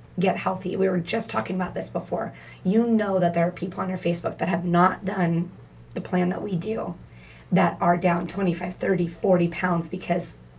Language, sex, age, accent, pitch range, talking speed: English, female, 30-49, American, 175-210 Hz, 200 wpm